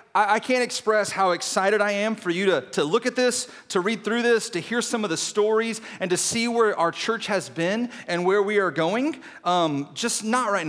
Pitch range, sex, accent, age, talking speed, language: 165-215 Hz, male, American, 30-49, 230 wpm, English